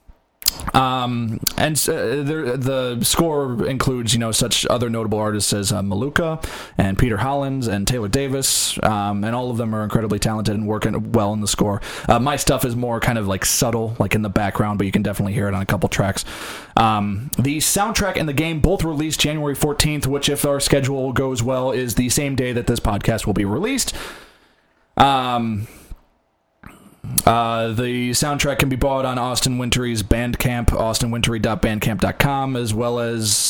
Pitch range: 105-135 Hz